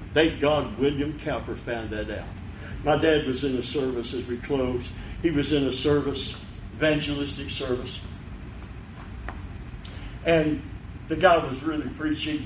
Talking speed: 140 wpm